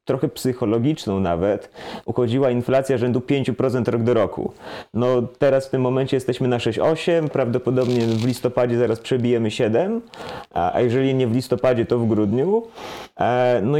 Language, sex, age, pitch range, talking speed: Polish, male, 30-49, 120-145 Hz, 145 wpm